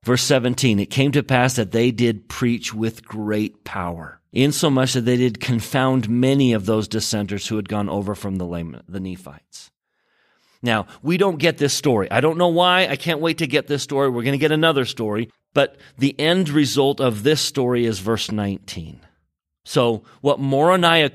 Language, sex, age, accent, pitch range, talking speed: English, male, 40-59, American, 105-140 Hz, 190 wpm